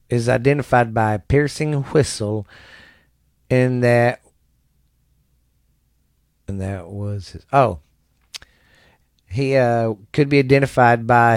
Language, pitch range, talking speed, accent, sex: English, 110-135 Hz, 100 wpm, American, male